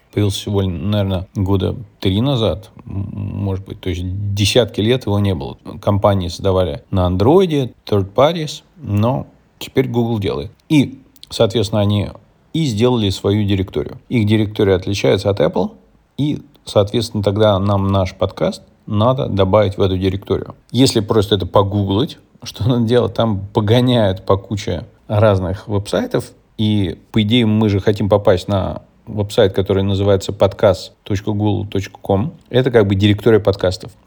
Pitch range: 100-115 Hz